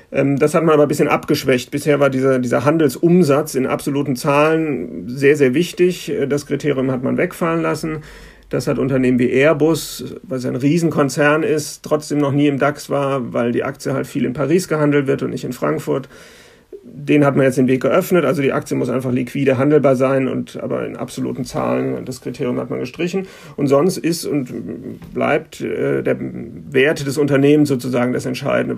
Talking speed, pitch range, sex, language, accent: 185 wpm, 130-150 Hz, male, German, German